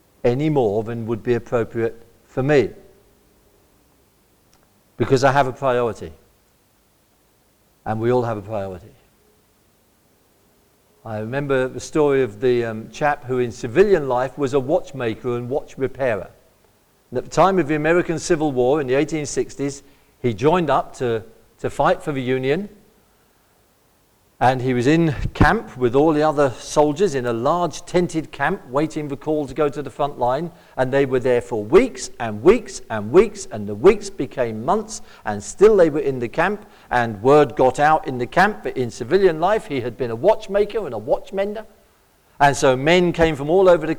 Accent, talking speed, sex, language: British, 180 wpm, male, English